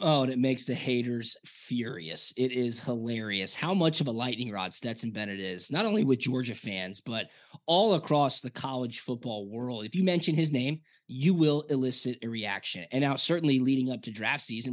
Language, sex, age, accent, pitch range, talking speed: English, male, 20-39, American, 120-155 Hz, 200 wpm